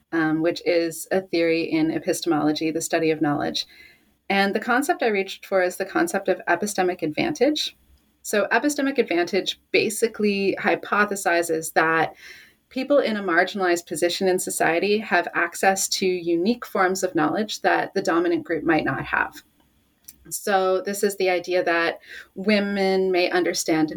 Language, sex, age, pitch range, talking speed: English, female, 30-49, 165-215 Hz, 150 wpm